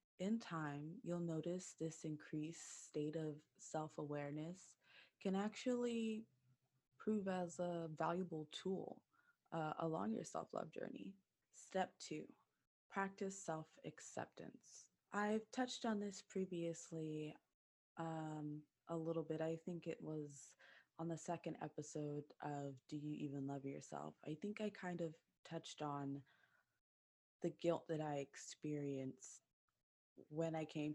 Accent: American